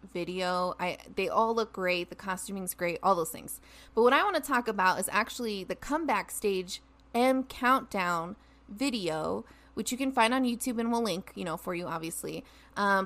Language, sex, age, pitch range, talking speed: English, female, 20-39, 195-250 Hz, 195 wpm